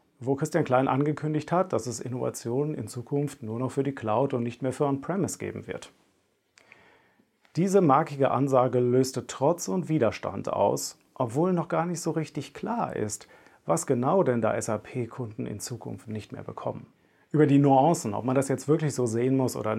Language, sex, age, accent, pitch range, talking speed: German, male, 40-59, German, 120-150 Hz, 180 wpm